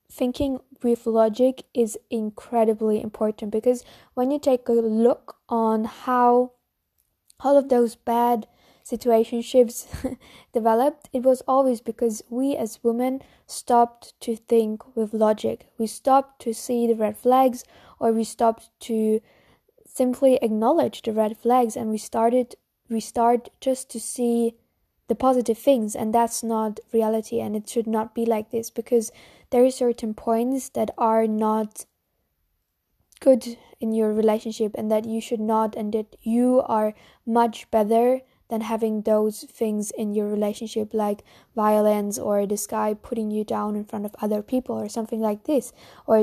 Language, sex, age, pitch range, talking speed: English, female, 10-29, 220-245 Hz, 150 wpm